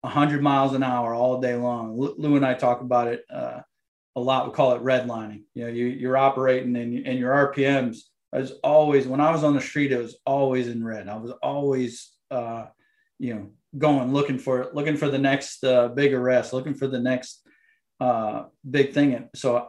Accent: American